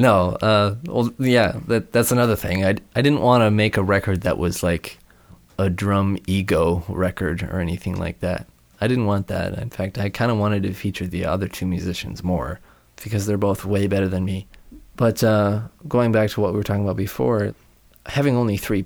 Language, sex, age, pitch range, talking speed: English, male, 20-39, 95-110 Hz, 205 wpm